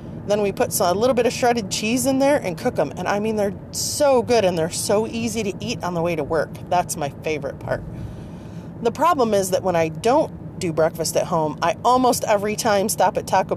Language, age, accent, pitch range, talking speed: English, 30-49, American, 160-230 Hz, 235 wpm